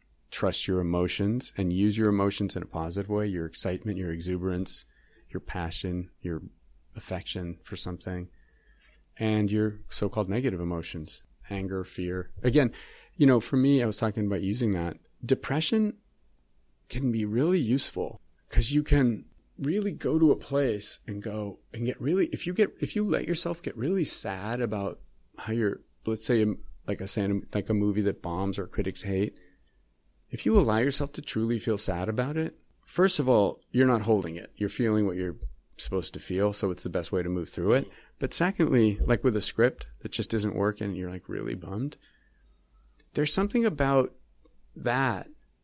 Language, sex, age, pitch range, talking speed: English, male, 30-49, 95-130 Hz, 175 wpm